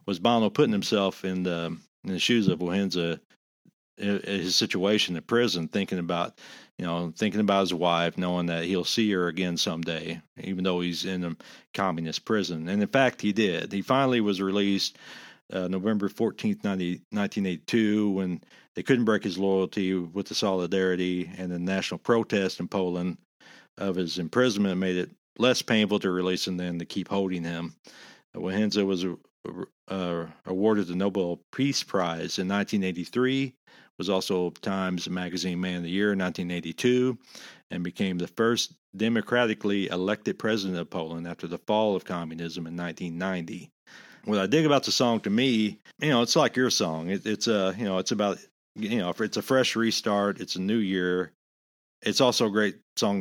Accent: American